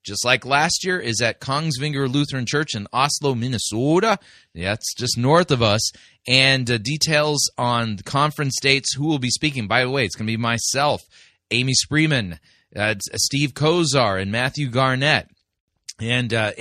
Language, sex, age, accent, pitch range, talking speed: English, male, 30-49, American, 115-145 Hz, 170 wpm